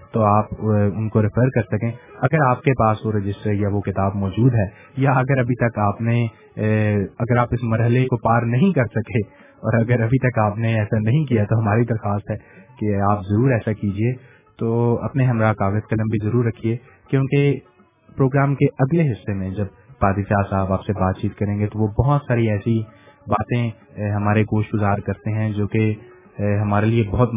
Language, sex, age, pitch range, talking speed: English, male, 30-49, 100-120 Hz, 165 wpm